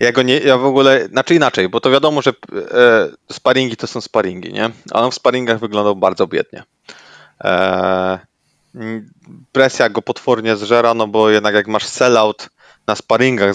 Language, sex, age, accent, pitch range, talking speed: Polish, male, 20-39, native, 110-135 Hz, 170 wpm